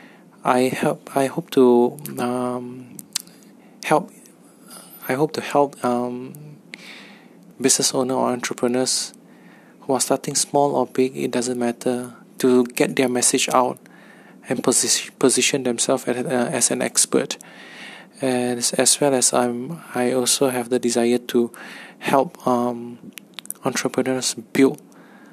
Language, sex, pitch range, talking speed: English, male, 120-130 Hz, 130 wpm